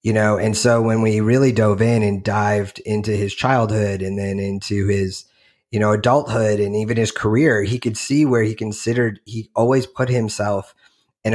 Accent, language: American, English